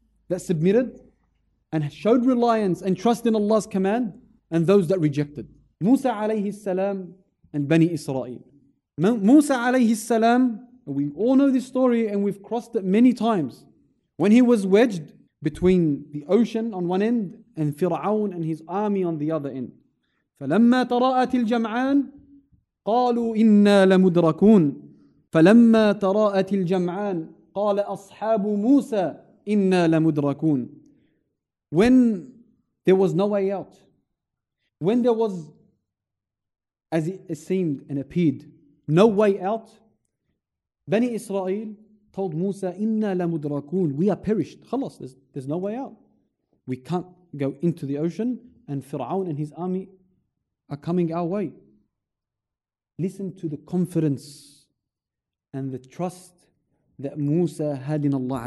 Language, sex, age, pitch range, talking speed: English, male, 30-49, 155-220 Hz, 125 wpm